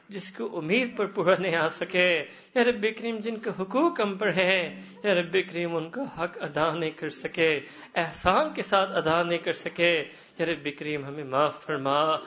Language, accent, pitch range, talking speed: English, Indian, 150-195 Hz, 140 wpm